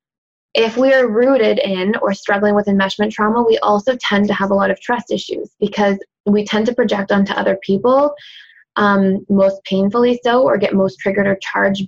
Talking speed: 190 wpm